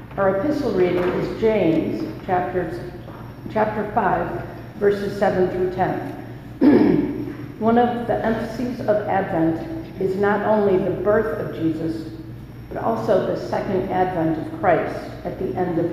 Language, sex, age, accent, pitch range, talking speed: English, female, 50-69, American, 160-210 Hz, 135 wpm